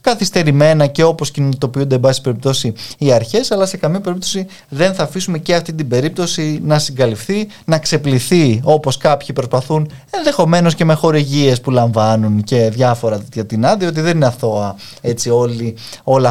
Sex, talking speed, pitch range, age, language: male, 160 wpm, 125-160 Hz, 20-39, Greek